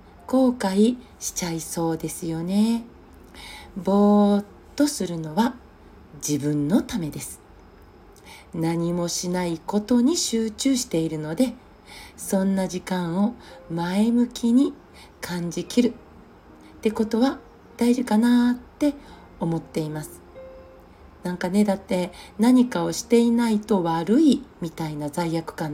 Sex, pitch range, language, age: female, 175-245 Hz, Japanese, 40-59